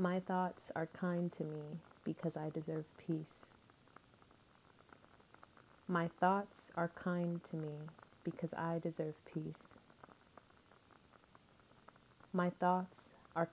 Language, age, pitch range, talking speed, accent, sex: English, 30-49, 155-175 Hz, 100 wpm, American, female